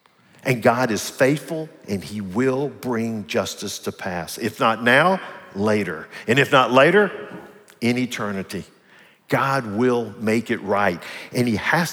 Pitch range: 115-145 Hz